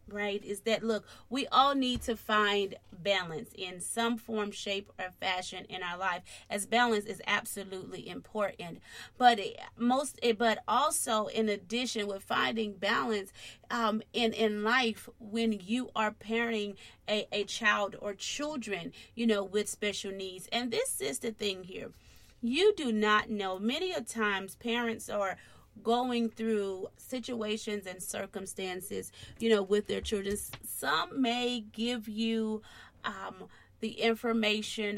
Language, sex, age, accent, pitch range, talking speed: English, female, 30-49, American, 195-230 Hz, 140 wpm